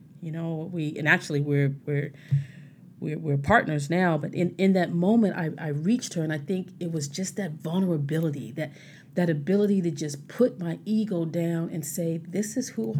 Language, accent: English, American